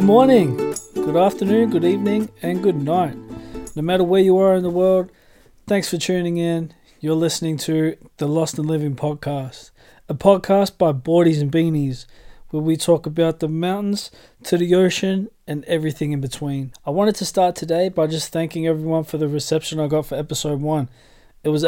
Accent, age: Australian, 20-39